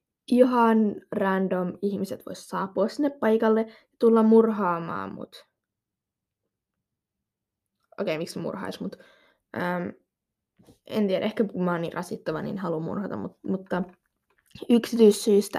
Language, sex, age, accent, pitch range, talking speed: Finnish, female, 20-39, native, 185-230 Hz, 120 wpm